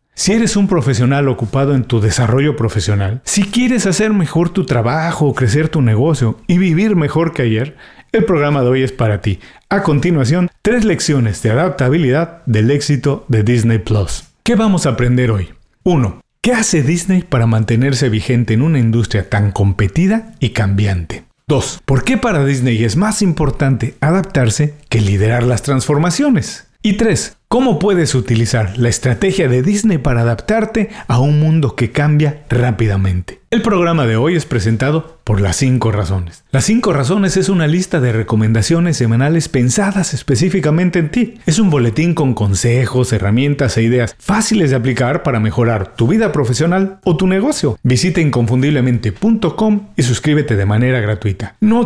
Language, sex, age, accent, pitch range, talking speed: Spanish, male, 50-69, Mexican, 115-180 Hz, 165 wpm